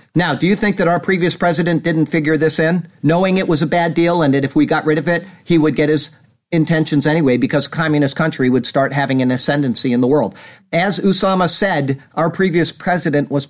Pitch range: 150-185 Hz